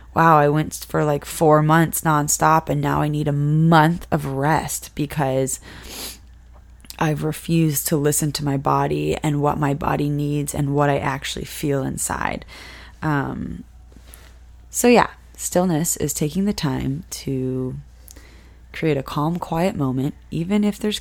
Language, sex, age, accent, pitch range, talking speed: English, female, 20-39, American, 135-165 Hz, 150 wpm